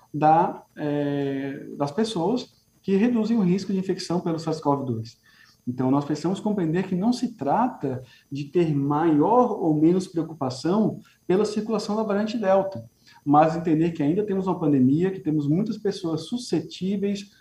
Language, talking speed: Portuguese, 150 wpm